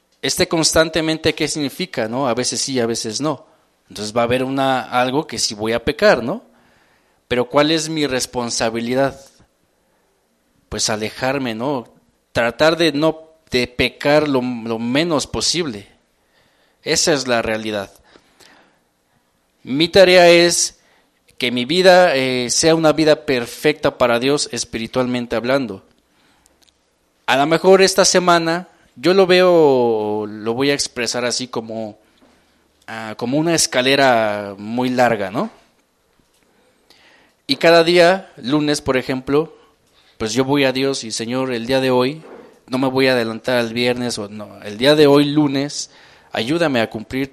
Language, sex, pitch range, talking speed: English, male, 110-150 Hz, 145 wpm